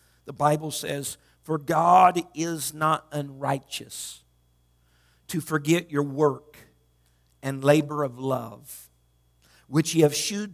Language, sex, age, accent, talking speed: English, male, 50-69, American, 115 wpm